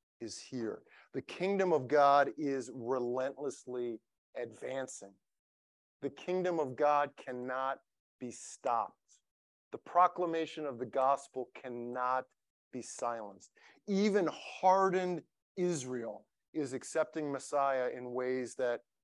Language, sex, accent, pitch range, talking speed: English, male, American, 125-170 Hz, 105 wpm